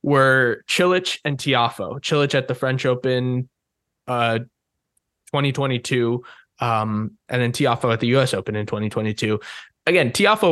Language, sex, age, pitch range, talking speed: English, male, 10-29, 120-170 Hz, 130 wpm